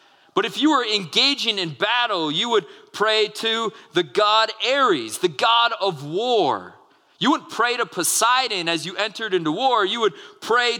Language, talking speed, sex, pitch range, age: English, 170 wpm, male, 195-275 Hz, 40-59